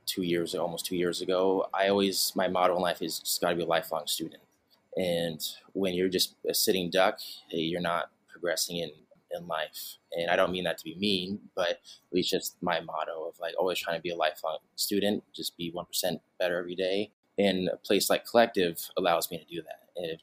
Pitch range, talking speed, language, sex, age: 85-100 Hz, 215 wpm, English, male, 20-39